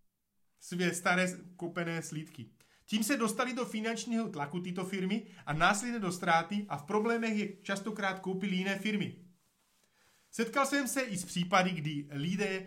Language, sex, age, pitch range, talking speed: Slovak, male, 30-49, 165-205 Hz, 150 wpm